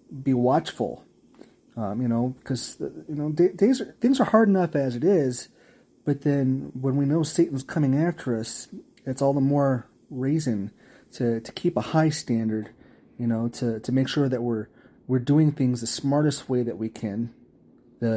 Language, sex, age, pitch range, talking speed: English, male, 30-49, 120-145 Hz, 185 wpm